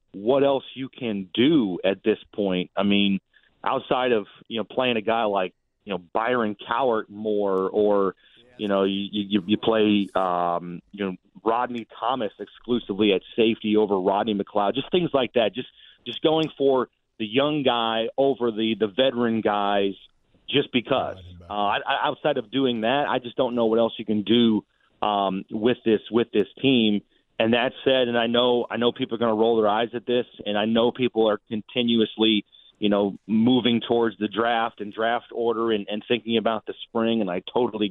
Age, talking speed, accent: 40-59, 195 wpm, American